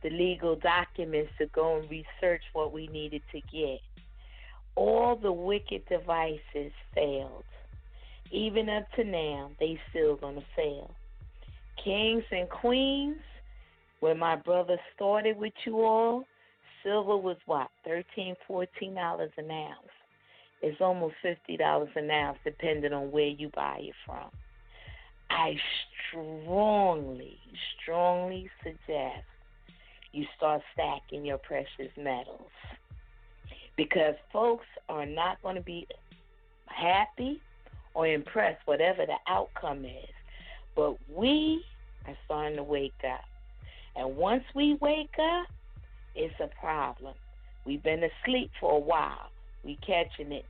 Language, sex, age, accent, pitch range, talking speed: English, female, 40-59, American, 150-215 Hz, 120 wpm